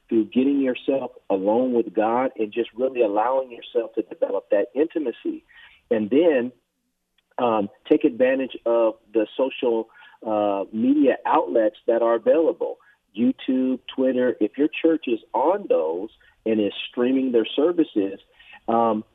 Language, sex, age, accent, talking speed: English, male, 40-59, American, 135 wpm